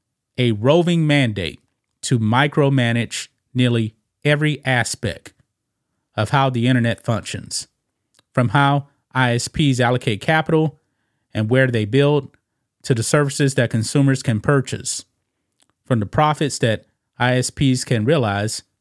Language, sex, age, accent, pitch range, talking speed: English, male, 30-49, American, 110-140 Hz, 115 wpm